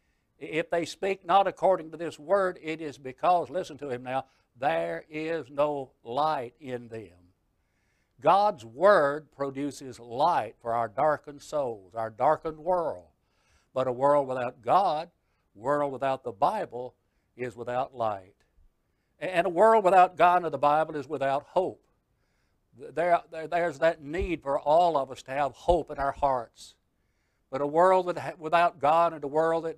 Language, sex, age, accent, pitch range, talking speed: English, male, 60-79, American, 130-170 Hz, 160 wpm